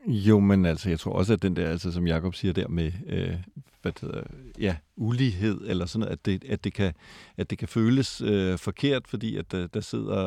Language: Danish